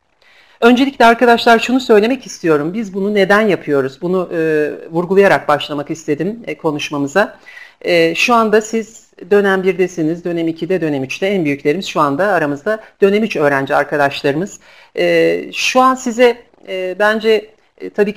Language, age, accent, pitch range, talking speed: Turkish, 50-69, native, 155-210 Hz, 140 wpm